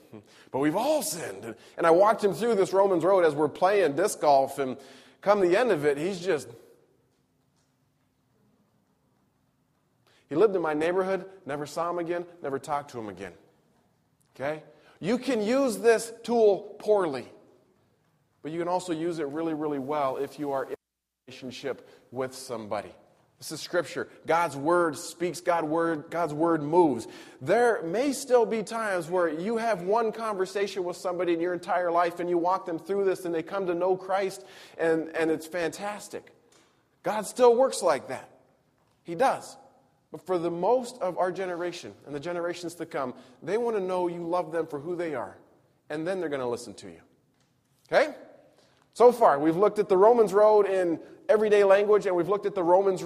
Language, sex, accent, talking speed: English, male, American, 180 wpm